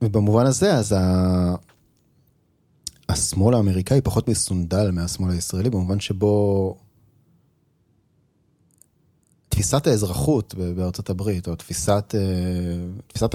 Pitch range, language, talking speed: 95-125 Hz, Hebrew, 85 wpm